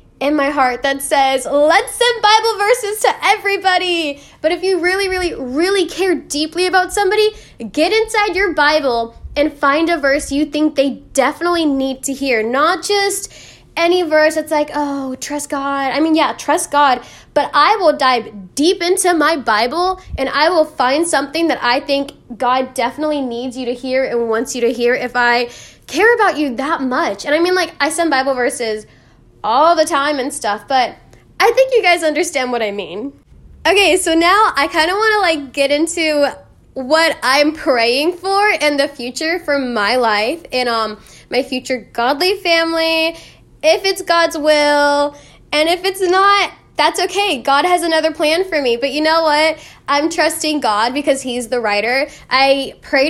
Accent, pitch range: American, 260-340 Hz